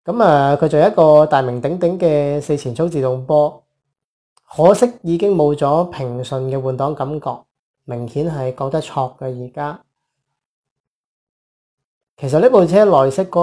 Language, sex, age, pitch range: Chinese, male, 20-39, 130-160 Hz